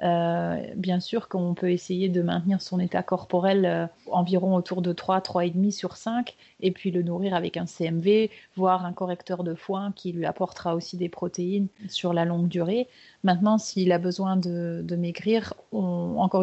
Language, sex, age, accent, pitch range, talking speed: French, female, 30-49, French, 175-195 Hz, 185 wpm